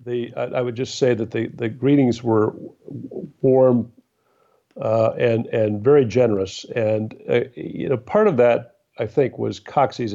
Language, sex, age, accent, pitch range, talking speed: English, male, 50-69, American, 105-125 Hz, 160 wpm